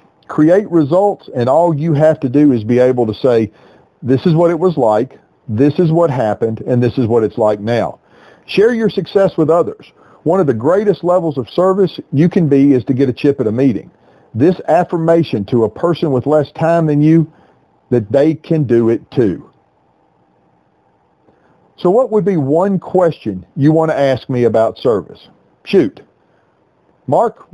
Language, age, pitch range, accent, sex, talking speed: English, 40-59, 125-165 Hz, American, male, 185 wpm